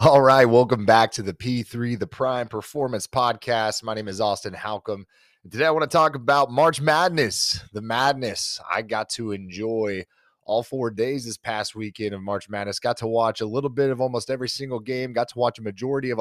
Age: 30-49